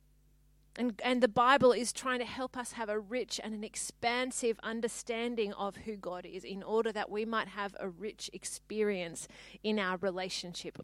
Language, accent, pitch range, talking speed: English, Australian, 195-230 Hz, 175 wpm